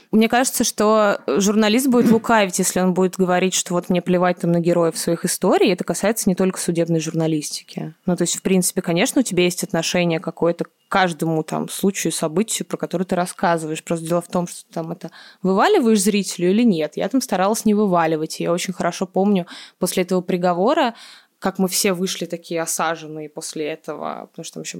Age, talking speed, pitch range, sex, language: 20-39, 195 wpm, 170-205 Hz, female, Russian